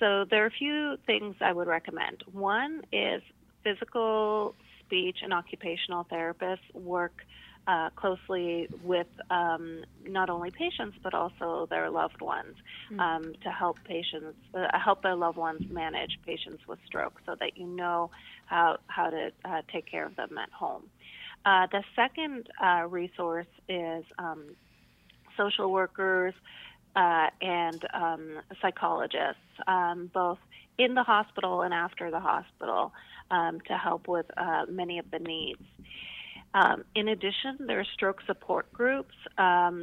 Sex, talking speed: female, 145 wpm